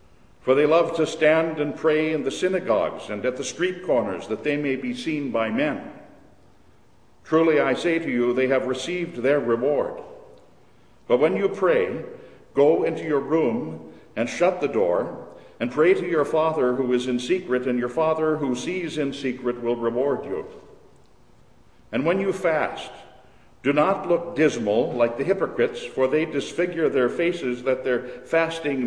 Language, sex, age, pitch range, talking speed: English, male, 60-79, 125-160 Hz, 170 wpm